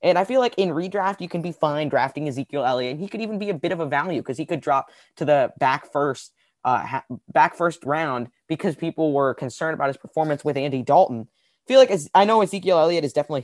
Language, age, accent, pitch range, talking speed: English, 20-39, American, 120-155 Hz, 240 wpm